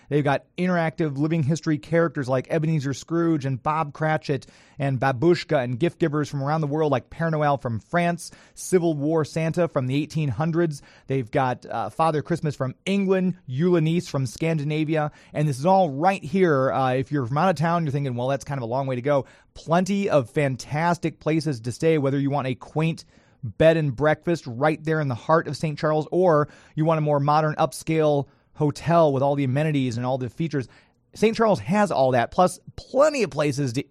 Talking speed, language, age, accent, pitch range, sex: 200 wpm, English, 30-49, American, 140-165 Hz, male